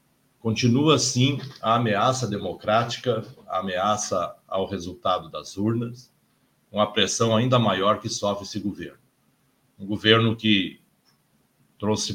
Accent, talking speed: Brazilian, 115 wpm